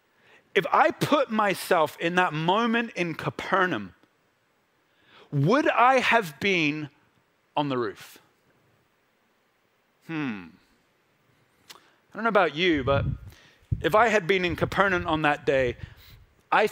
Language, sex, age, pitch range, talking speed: English, male, 30-49, 170-215 Hz, 120 wpm